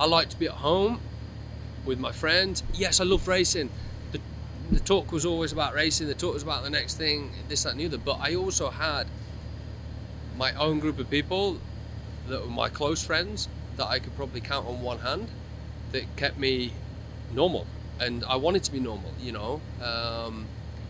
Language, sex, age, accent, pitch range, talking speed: English, male, 30-49, British, 105-130 Hz, 190 wpm